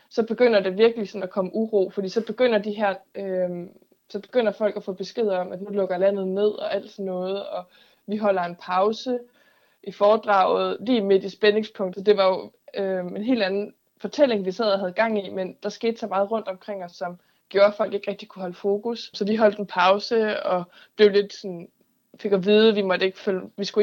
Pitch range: 185-215 Hz